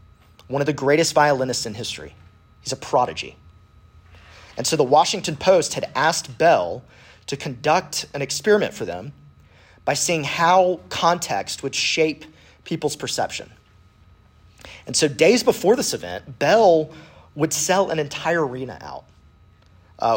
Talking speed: 135 wpm